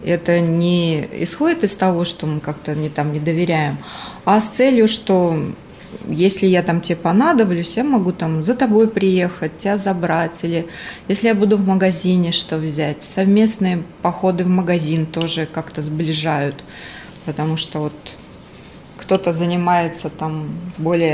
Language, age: Russian, 20-39